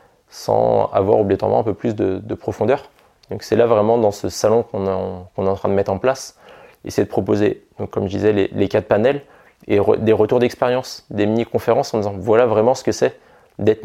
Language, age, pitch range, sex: French, 20-39, 100-110 Hz, male